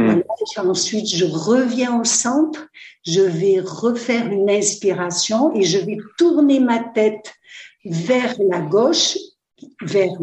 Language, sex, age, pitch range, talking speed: French, female, 60-79, 190-235 Hz, 115 wpm